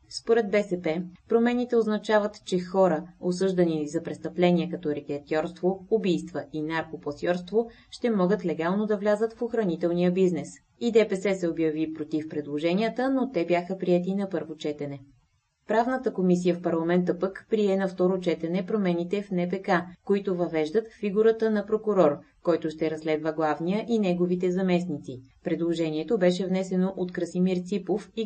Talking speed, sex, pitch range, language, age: 140 wpm, female, 160-210 Hz, Bulgarian, 20-39